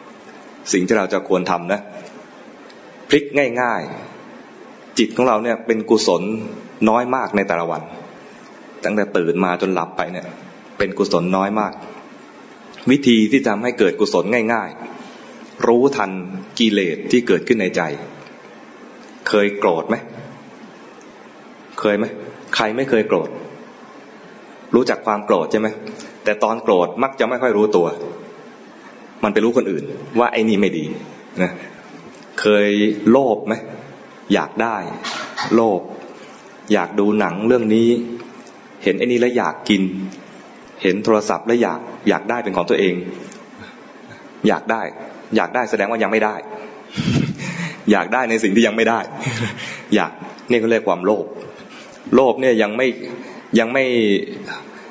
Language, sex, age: English, male, 20-39